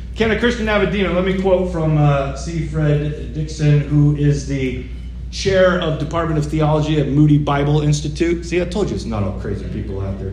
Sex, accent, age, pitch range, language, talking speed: male, American, 40-59, 140-195 Hz, English, 215 wpm